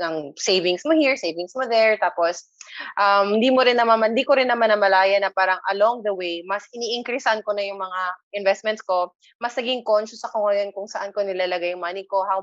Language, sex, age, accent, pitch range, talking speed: English, female, 20-39, Filipino, 180-225 Hz, 210 wpm